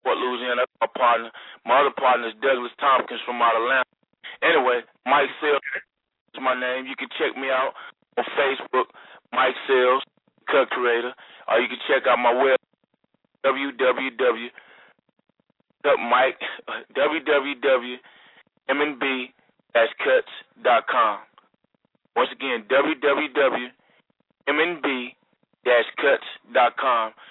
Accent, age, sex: American, 20-39, male